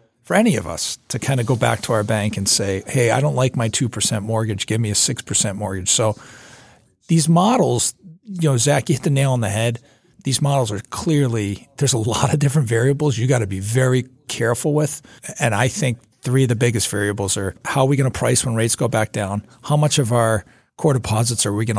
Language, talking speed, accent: English, 235 wpm, American